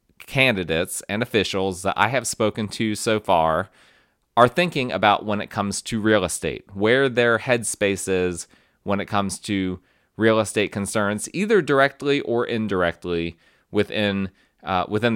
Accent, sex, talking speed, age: American, male, 145 wpm, 30-49